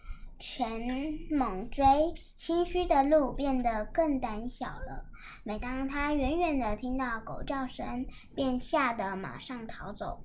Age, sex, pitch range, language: 10-29, male, 230-280 Hz, Chinese